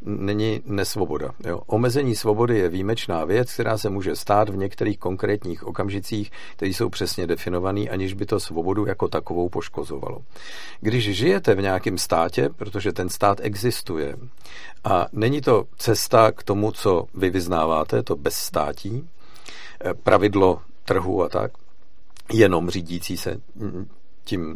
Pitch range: 95-120 Hz